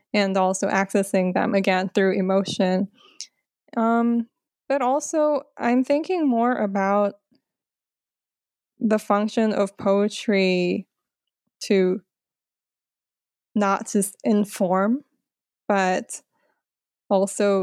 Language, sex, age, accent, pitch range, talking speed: English, female, 20-39, American, 190-220 Hz, 80 wpm